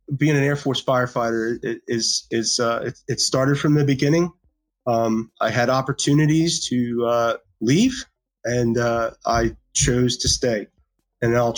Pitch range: 120-140 Hz